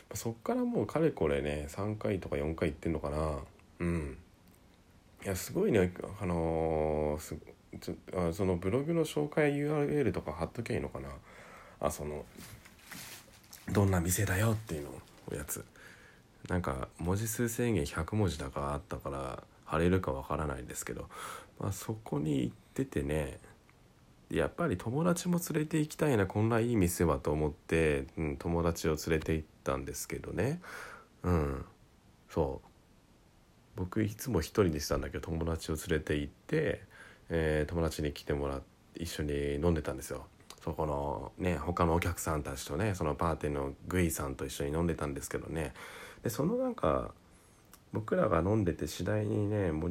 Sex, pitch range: male, 75-105 Hz